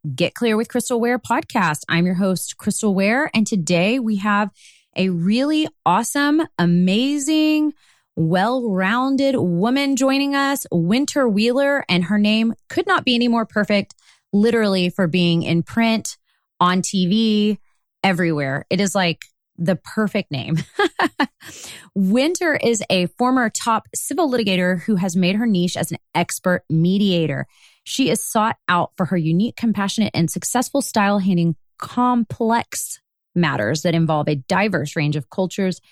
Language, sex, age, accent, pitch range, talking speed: English, female, 30-49, American, 170-235 Hz, 140 wpm